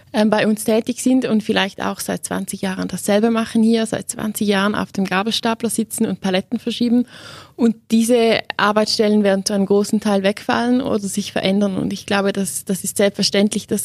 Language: German